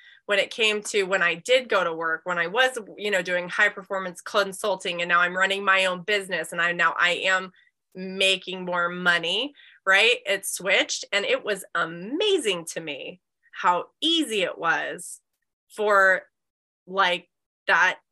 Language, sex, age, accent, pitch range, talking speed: English, female, 20-39, American, 180-230 Hz, 165 wpm